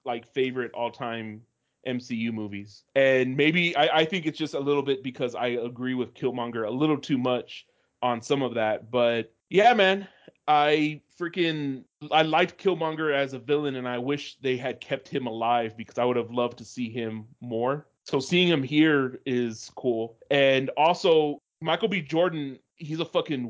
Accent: American